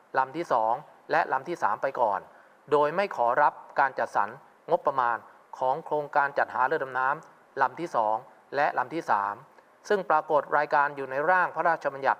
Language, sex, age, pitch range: Thai, male, 20-39, 130-155 Hz